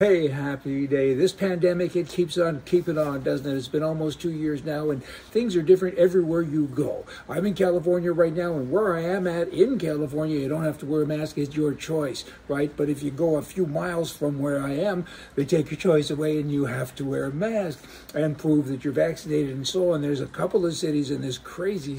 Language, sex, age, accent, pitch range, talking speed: English, male, 60-79, American, 140-170 Hz, 235 wpm